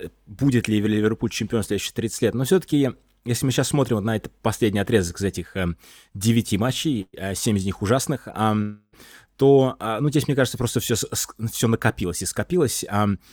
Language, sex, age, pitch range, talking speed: Russian, male, 20-39, 95-120 Hz, 165 wpm